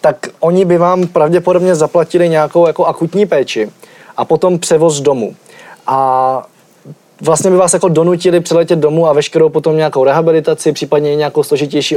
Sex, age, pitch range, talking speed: male, 20-39, 145-170 Hz, 150 wpm